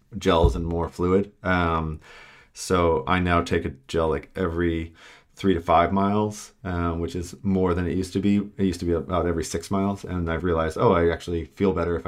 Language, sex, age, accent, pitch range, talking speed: English, male, 30-49, American, 85-95 Hz, 215 wpm